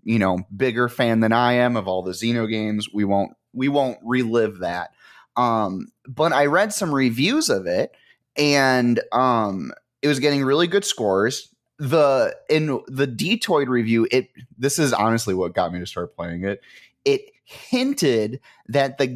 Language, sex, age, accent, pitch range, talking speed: English, male, 30-49, American, 115-155 Hz, 170 wpm